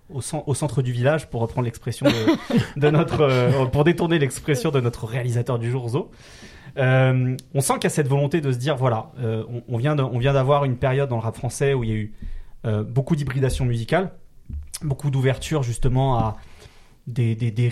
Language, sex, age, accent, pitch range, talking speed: French, male, 30-49, French, 120-150 Hz, 205 wpm